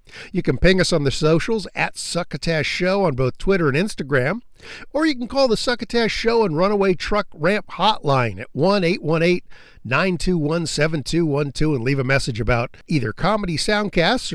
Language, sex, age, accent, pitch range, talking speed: English, male, 50-69, American, 140-215 Hz, 155 wpm